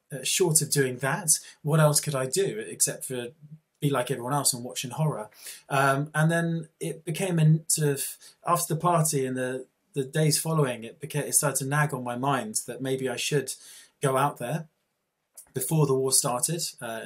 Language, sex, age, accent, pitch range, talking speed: Russian, male, 20-39, British, 130-150 Hz, 195 wpm